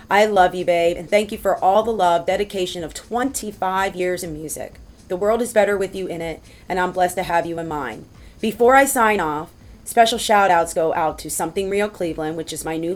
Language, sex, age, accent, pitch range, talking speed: English, female, 30-49, American, 170-215 Hz, 225 wpm